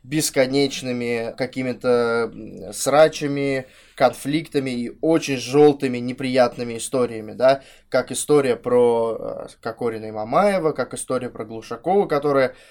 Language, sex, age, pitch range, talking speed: Russian, male, 20-39, 125-155 Hz, 100 wpm